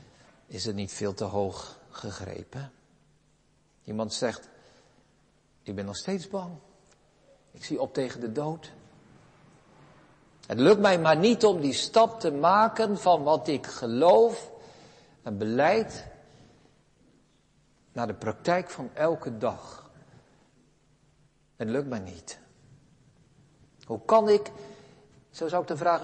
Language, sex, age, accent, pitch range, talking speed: Dutch, male, 60-79, Dutch, 130-200 Hz, 125 wpm